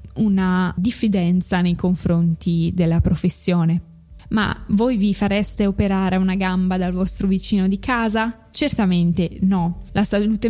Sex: female